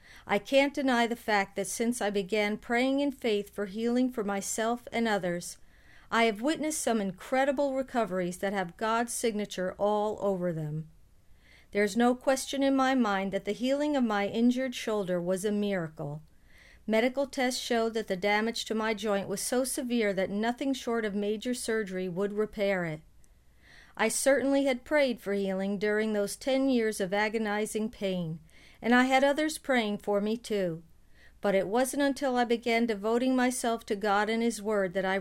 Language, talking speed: English, 175 wpm